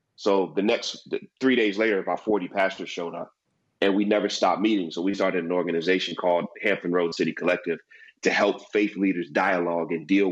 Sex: male